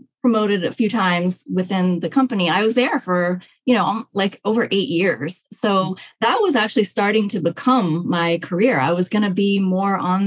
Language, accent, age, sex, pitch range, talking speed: English, American, 30-49, female, 180-225 Hz, 195 wpm